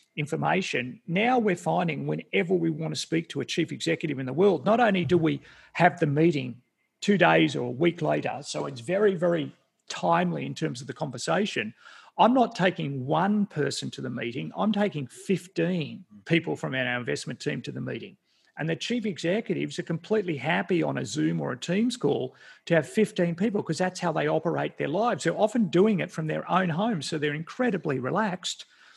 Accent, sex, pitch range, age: Australian, male, 150-190 Hz, 40-59